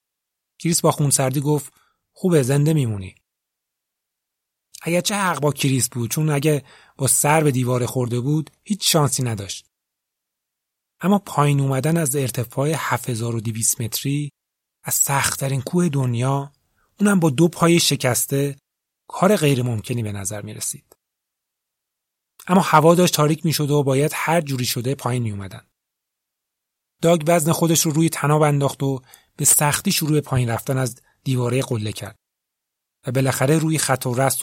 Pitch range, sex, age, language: 120-155 Hz, male, 30-49, Persian